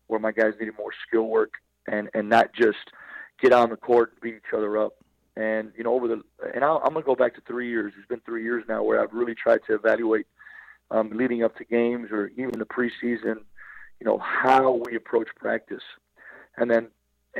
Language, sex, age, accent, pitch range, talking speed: English, male, 40-59, American, 110-125 Hz, 220 wpm